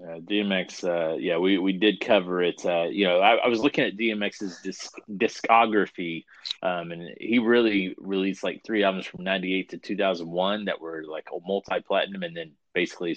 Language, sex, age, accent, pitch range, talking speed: English, male, 30-49, American, 85-105 Hz, 195 wpm